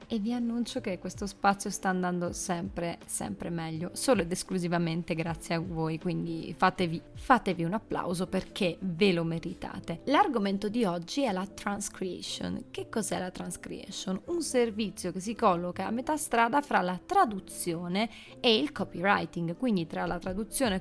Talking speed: 155 wpm